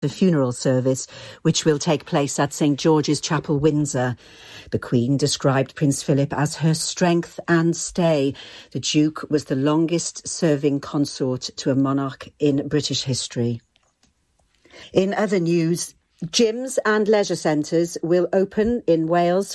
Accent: British